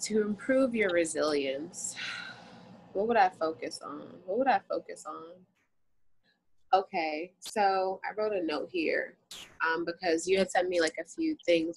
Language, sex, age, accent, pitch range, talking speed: English, female, 20-39, American, 160-220 Hz, 160 wpm